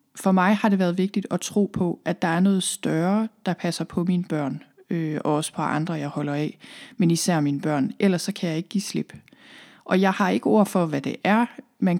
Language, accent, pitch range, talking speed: Danish, native, 170-215 Hz, 235 wpm